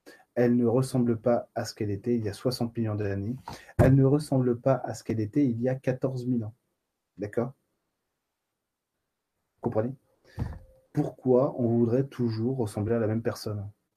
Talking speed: 170 wpm